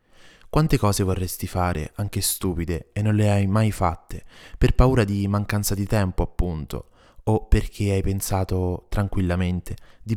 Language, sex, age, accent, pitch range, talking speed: Italian, male, 20-39, native, 85-100 Hz, 150 wpm